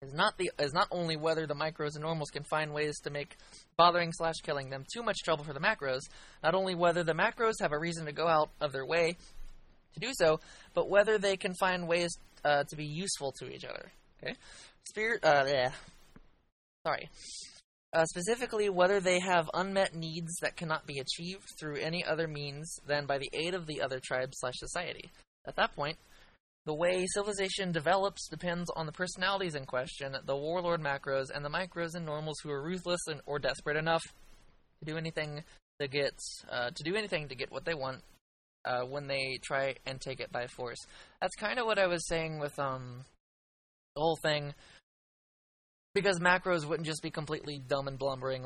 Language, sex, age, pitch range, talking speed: English, male, 20-39, 140-175 Hz, 195 wpm